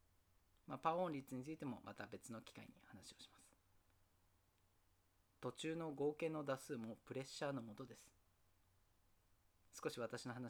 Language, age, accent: Japanese, 40-59, native